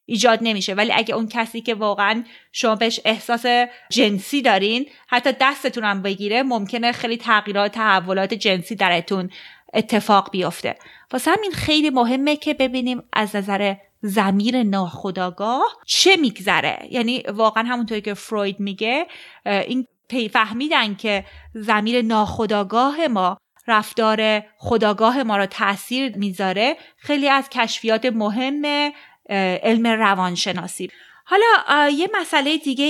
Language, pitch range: Persian, 210-270 Hz